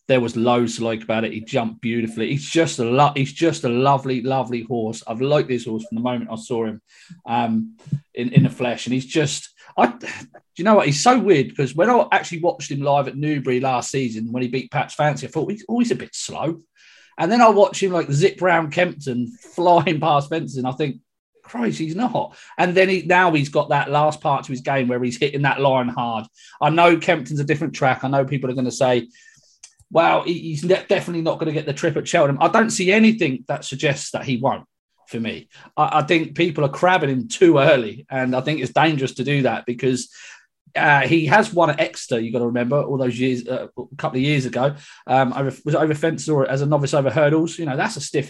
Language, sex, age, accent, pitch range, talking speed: English, male, 30-49, British, 125-165 Hz, 240 wpm